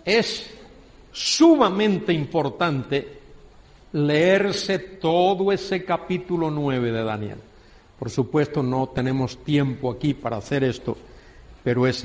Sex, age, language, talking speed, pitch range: male, 50-69, Spanish, 105 wpm, 140-230 Hz